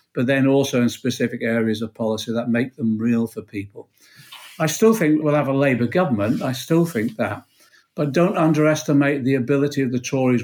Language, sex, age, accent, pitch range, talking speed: English, male, 50-69, British, 120-150 Hz, 195 wpm